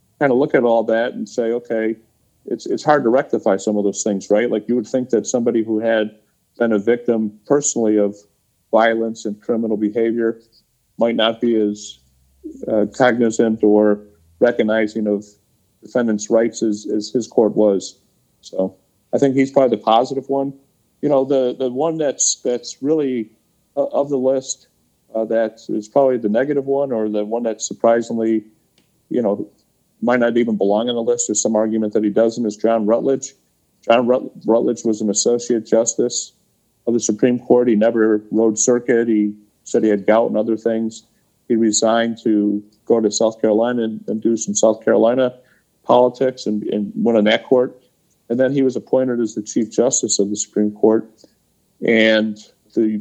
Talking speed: 180 wpm